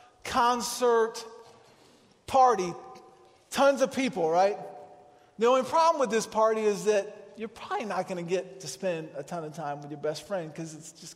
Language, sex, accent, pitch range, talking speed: English, male, American, 170-235 Hz, 175 wpm